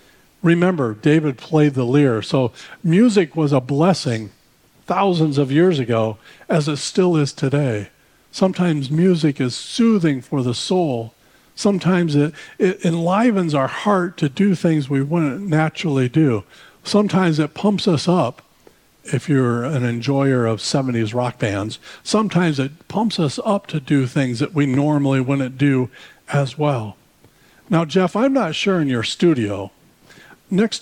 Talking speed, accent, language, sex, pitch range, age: 150 wpm, American, English, male, 135-185 Hz, 50-69